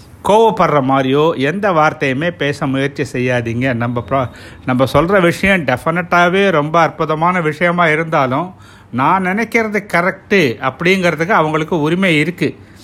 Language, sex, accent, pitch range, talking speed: Tamil, male, native, 110-180 Hz, 110 wpm